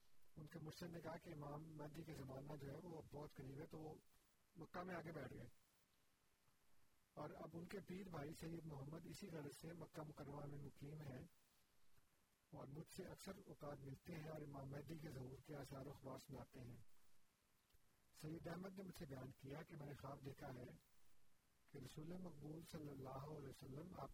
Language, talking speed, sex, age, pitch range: Urdu, 195 wpm, male, 50-69, 130-155 Hz